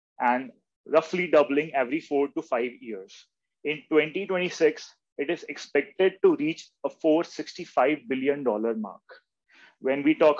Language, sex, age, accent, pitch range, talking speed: English, male, 30-49, Indian, 135-175 Hz, 125 wpm